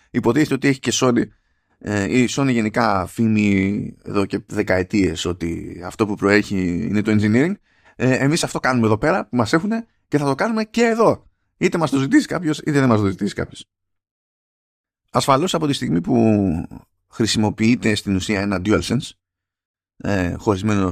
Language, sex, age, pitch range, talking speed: Greek, male, 20-39, 100-130 Hz, 160 wpm